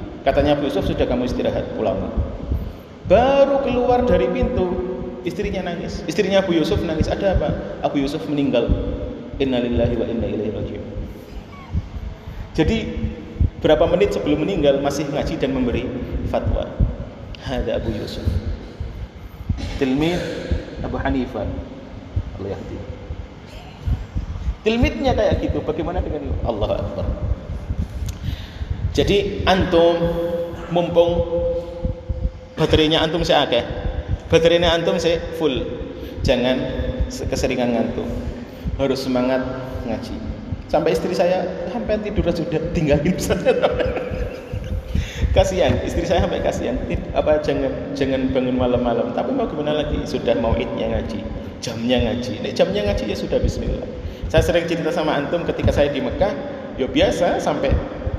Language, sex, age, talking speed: Indonesian, male, 30-49, 110 wpm